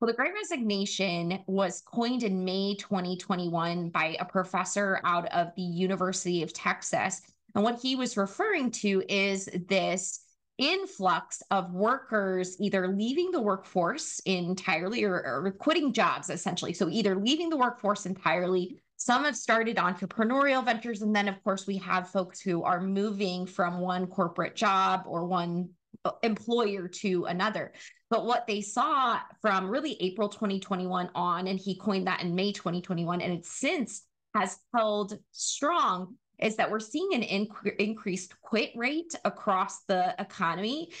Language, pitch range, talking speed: English, 180-225 Hz, 150 wpm